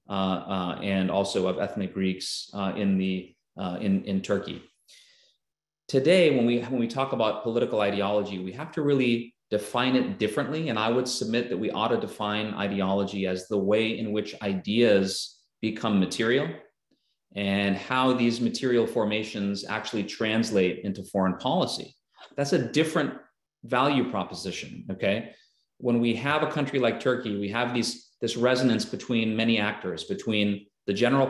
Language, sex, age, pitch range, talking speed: English, male, 30-49, 100-120 Hz, 155 wpm